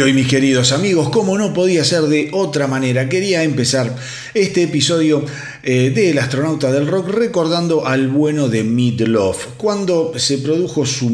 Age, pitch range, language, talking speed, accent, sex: 40-59, 120-155 Hz, Spanish, 155 wpm, Argentinian, male